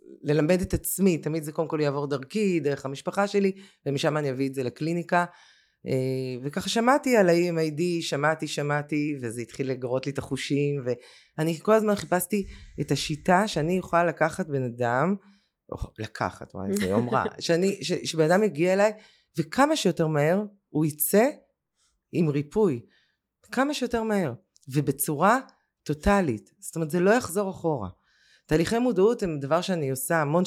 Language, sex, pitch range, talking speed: Hebrew, female, 135-195 Hz, 150 wpm